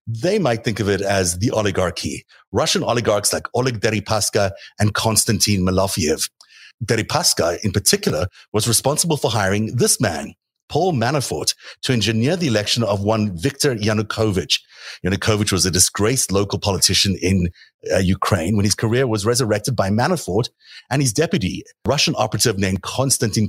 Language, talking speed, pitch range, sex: English, 150 wpm, 95-120 Hz, male